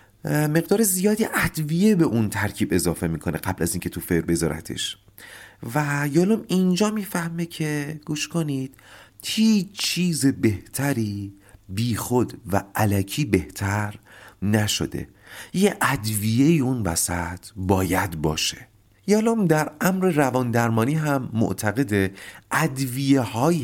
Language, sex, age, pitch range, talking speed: Persian, male, 40-59, 95-140 Hz, 110 wpm